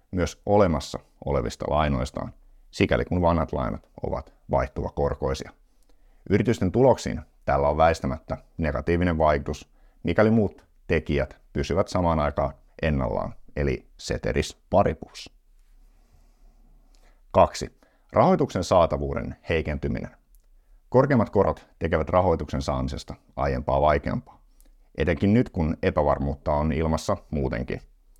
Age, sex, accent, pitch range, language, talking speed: 50-69, male, native, 70-85 Hz, Finnish, 95 wpm